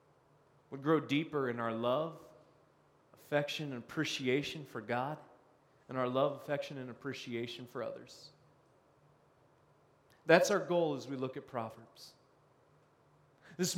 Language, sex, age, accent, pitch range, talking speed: English, male, 30-49, American, 130-180 Hz, 120 wpm